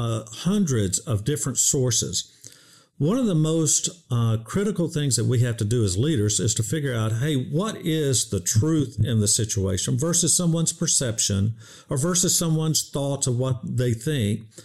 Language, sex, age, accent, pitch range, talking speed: English, male, 50-69, American, 120-160 Hz, 170 wpm